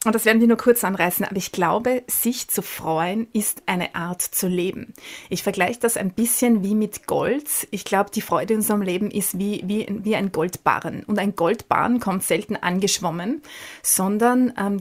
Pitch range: 185-220 Hz